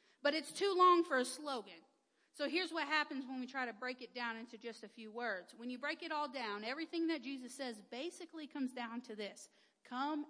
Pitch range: 245-315 Hz